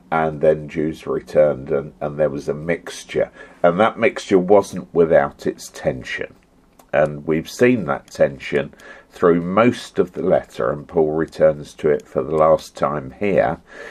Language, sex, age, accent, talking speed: English, male, 50-69, British, 160 wpm